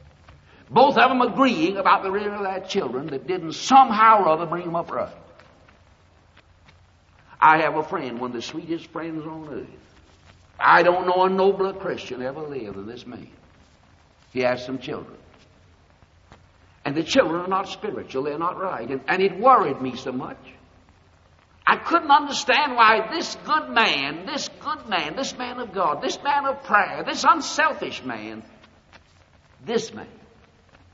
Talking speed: 165 wpm